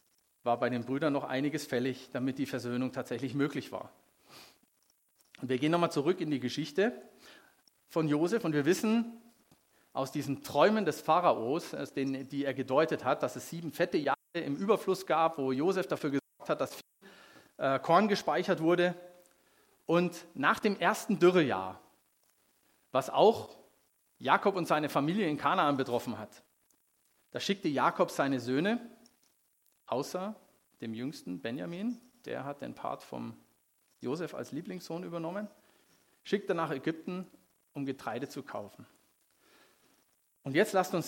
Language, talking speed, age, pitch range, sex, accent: German, 145 wpm, 40-59, 135-185 Hz, male, German